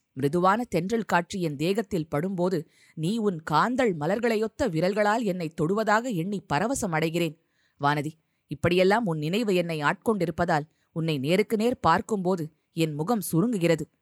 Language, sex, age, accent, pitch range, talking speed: Tamil, female, 20-39, native, 160-210 Hz, 125 wpm